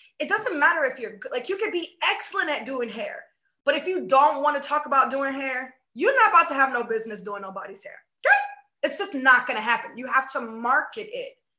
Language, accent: English, American